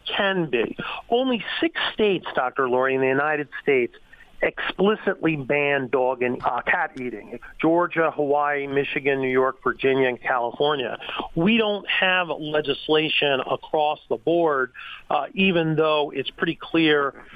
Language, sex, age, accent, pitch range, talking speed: English, male, 50-69, American, 140-180 Hz, 135 wpm